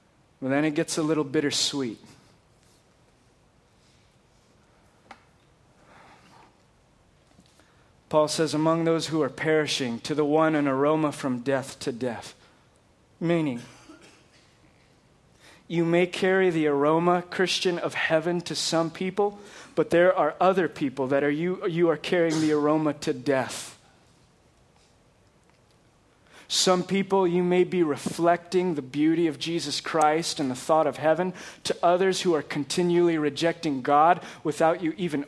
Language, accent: English, American